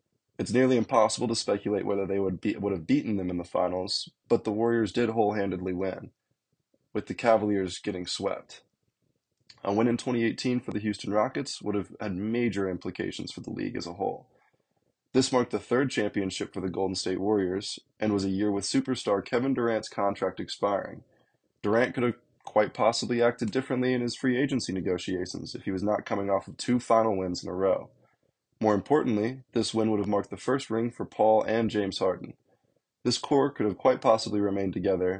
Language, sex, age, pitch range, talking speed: English, male, 20-39, 95-120 Hz, 195 wpm